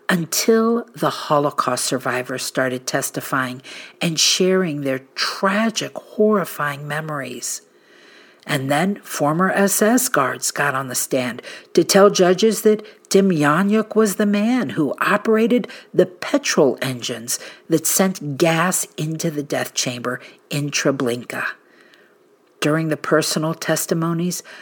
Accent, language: American, English